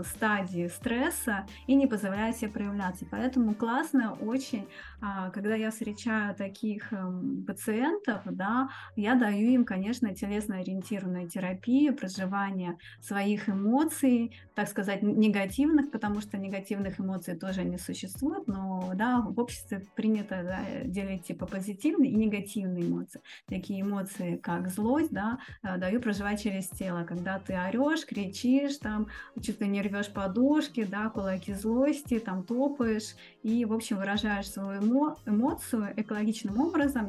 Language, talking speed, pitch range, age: Russian, 125 wpm, 195-245 Hz, 20-39